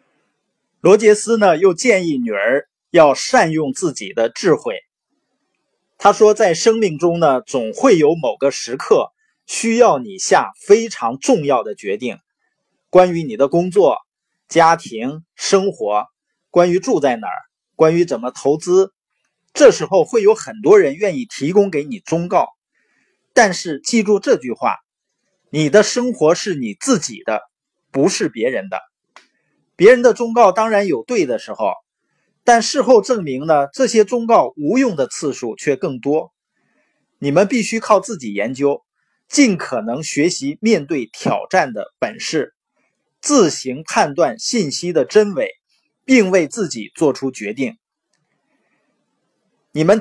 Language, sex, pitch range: Chinese, male, 165-260 Hz